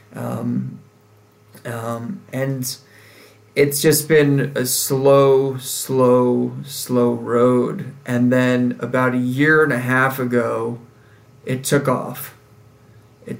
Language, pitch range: English, 120-140 Hz